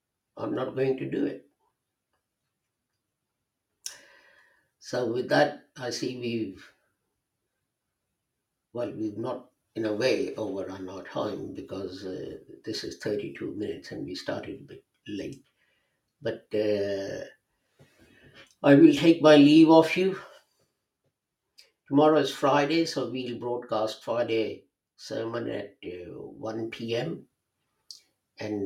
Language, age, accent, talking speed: English, 60-79, Indian, 115 wpm